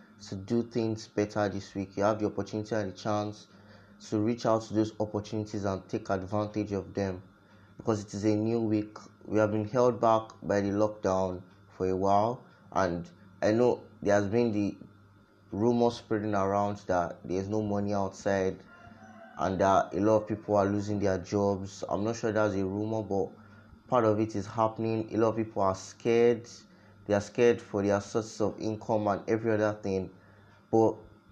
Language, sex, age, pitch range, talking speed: English, male, 20-39, 100-110 Hz, 185 wpm